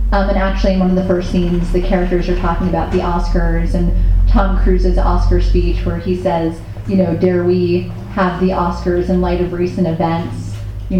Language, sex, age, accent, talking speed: English, female, 30-49, American, 200 wpm